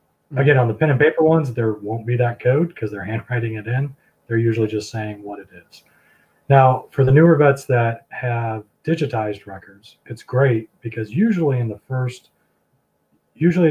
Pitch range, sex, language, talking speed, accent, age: 110-135 Hz, male, English, 180 wpm, American, 30-49